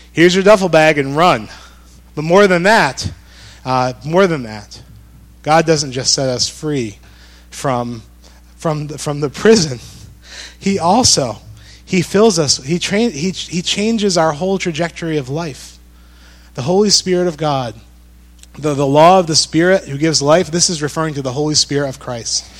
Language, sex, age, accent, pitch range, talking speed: English, male, 30-49, American, 120-165 Hz, 170 wpm